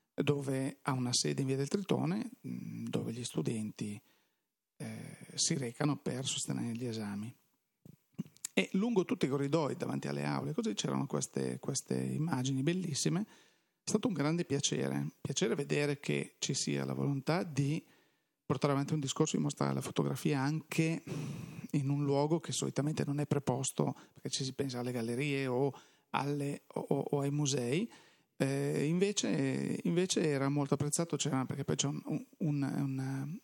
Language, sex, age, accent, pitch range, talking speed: Italian, male, 40-59, native, 130-160 Hz, 150 wpm